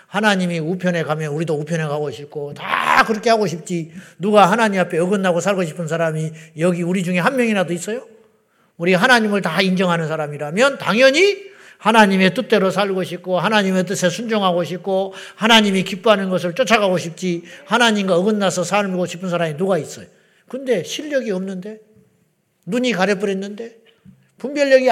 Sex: male